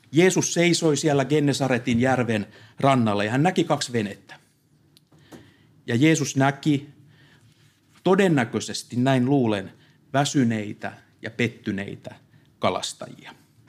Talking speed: 90 wpm